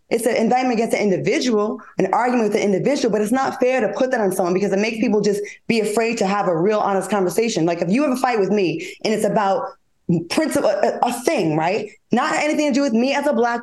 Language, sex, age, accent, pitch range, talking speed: English, female, 20-39, American, 200-265 Hz, 255 wpm